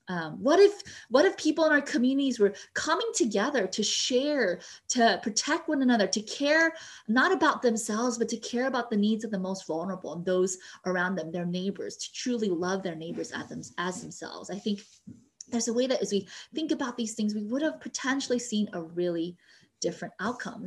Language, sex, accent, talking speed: English, female, American, 195 wpm